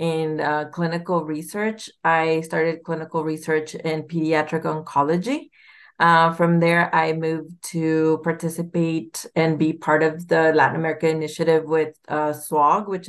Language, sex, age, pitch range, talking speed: English, female, 30-49, 155-175 Hz, 140 wpm